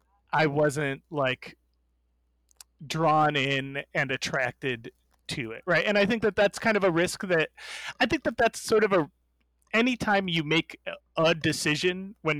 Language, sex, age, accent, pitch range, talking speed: English, male, 30-49, American, 145-205 Hz, 160 wpm